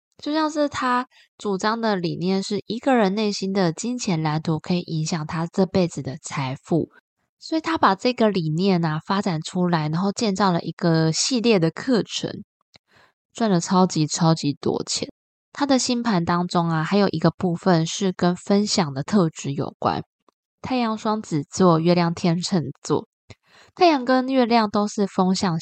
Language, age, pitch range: Chinese, 20-39, 165-220 Hz